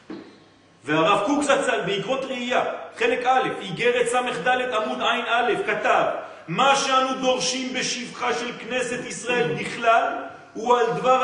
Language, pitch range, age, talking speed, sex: French, 175-260 Hz, 40-59, 140 wpm, male